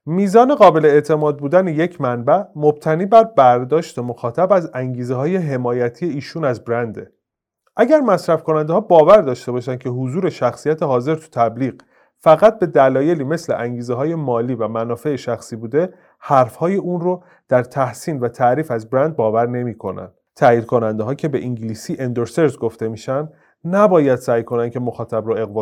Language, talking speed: Persian, 160 wpm